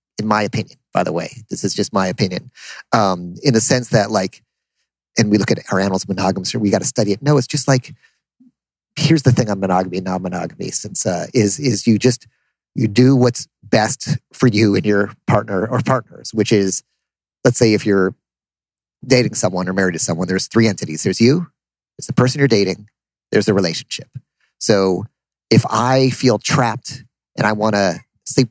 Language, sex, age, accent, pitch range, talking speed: English, male, 40-59, American, 100-125 Hz, 195 wpm